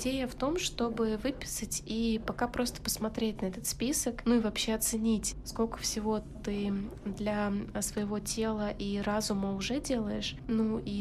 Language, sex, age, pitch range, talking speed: Russian, female, 20-39, 210-235 Hz, 155 wpm